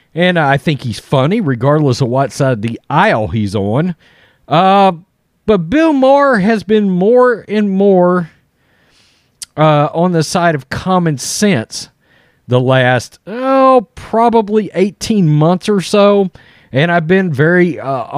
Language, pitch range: English, 130-185 Hz